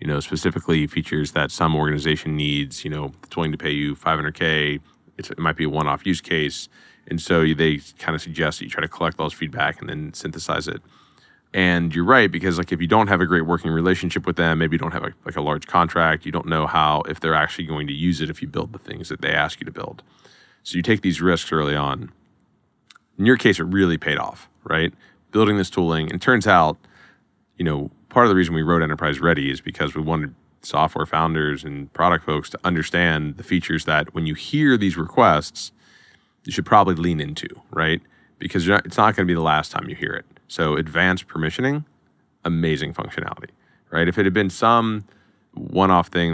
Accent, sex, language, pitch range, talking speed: American, male, English, 75-90 Hz, 220 wpm